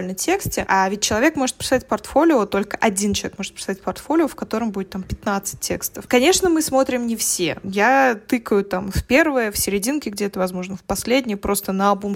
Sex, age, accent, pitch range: female, 20-39, native, 200-245 Hz